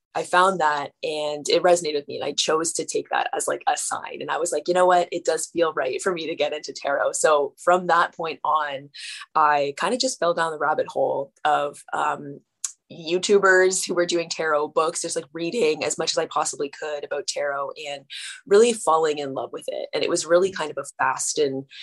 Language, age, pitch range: English, 20-39, 150-225 Hz